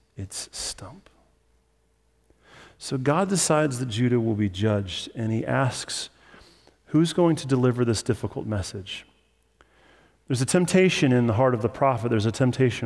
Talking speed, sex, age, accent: 150 wpm, male, 30-49, American